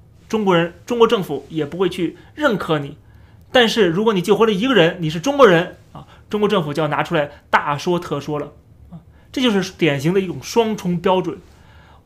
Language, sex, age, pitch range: Chinese, male, 30-49, 155-220 Hz